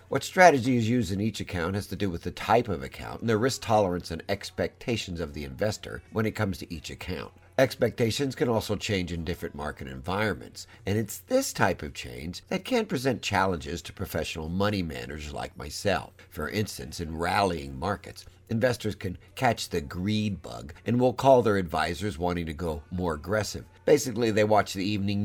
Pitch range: 85-110 Hz